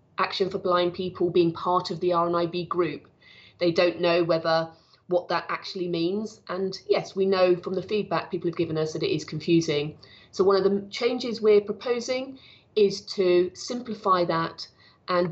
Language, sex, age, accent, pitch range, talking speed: English, female, 30-49, British, 165-205 Hz, 175 wpm